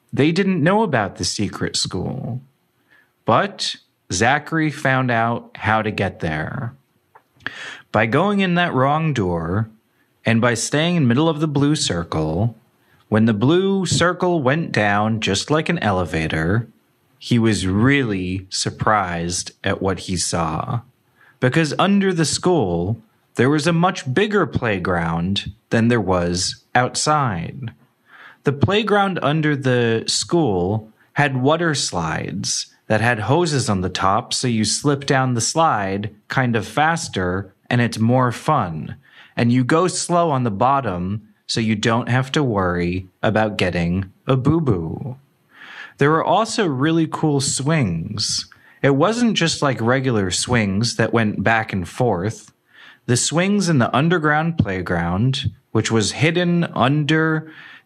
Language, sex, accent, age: English, male, American, 30-49